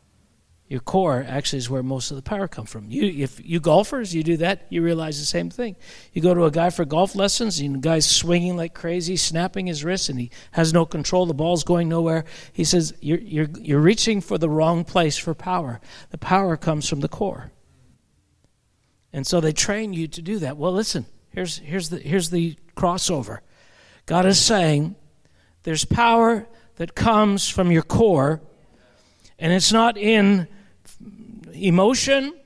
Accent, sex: American, male